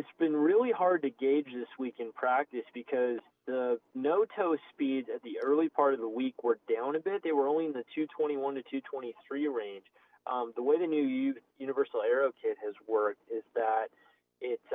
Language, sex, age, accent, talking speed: English, male, 20-39, American, 190 wpm